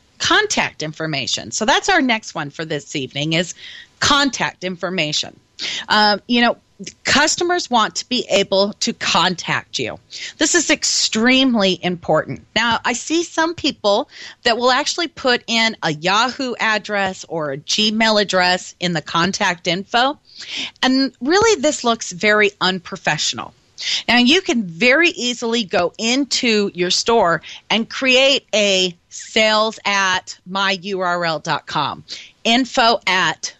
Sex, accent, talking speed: female, American, 130 wpm